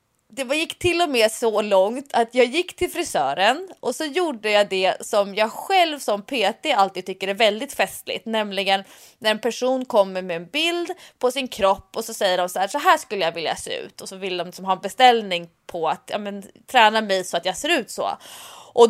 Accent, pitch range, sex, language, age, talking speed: Swedish, 200-280 Hz, female, English, 20-39, 225 wpm